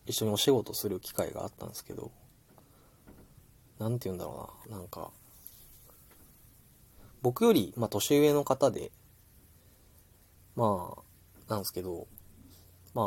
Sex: male